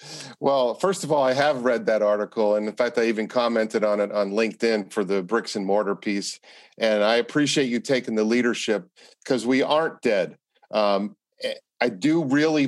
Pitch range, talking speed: 110-130 Hz, 190 wpm